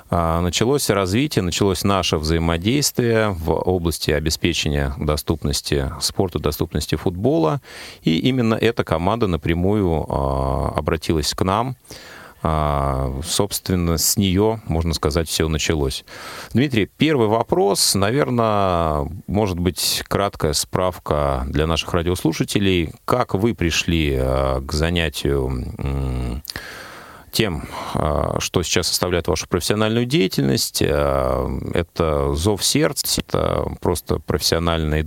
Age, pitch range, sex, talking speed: 30-49, 75-100 Hz, male, 95 wpm